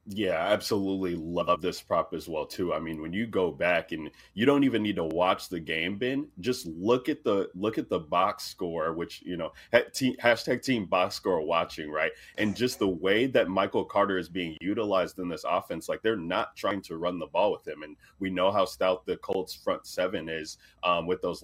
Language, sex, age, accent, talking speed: English, male, 30-49, American, 215 wpm